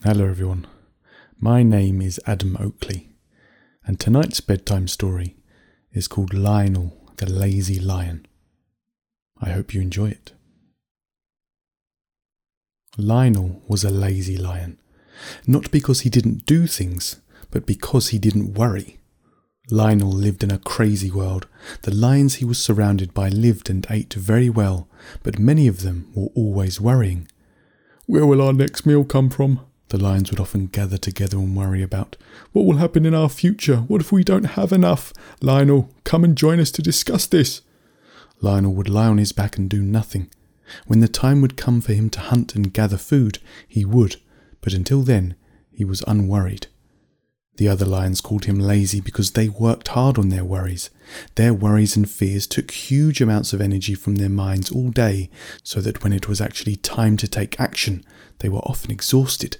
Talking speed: 170 wpm